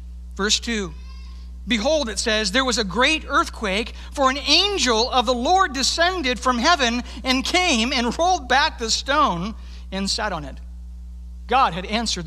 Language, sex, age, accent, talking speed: English, male, 60-79, American, 160 wpm